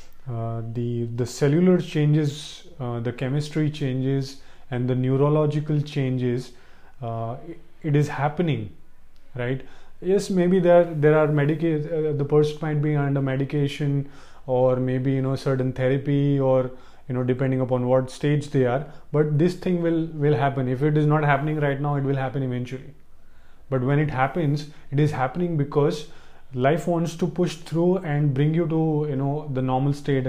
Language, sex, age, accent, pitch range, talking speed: English, male, 20-39, Indian, 130-150 Hz, 165 wpm